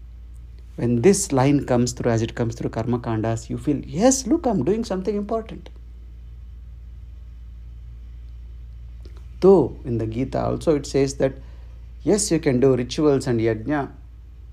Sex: male